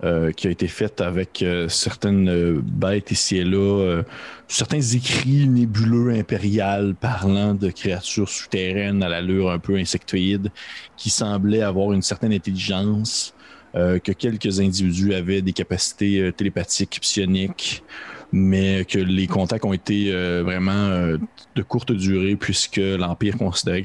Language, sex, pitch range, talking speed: French, male, 95-115 Hz, 145 wpm